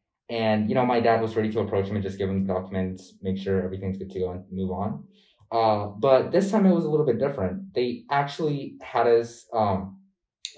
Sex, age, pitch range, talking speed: male, 20-39, 95-125 Hz, 225 wpm